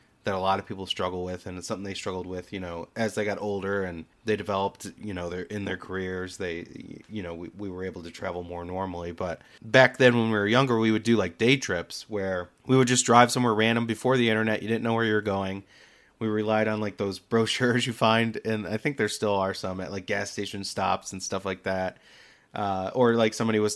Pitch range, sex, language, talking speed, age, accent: 95-115 Hz, male, English, 245 wpm, 30-49, American